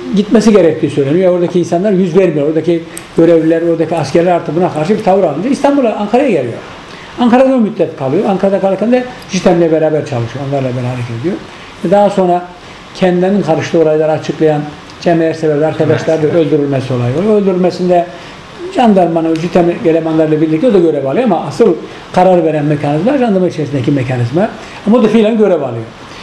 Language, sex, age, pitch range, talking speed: Hebrew, male, 60-79, 155-215 Hz, 155 wpm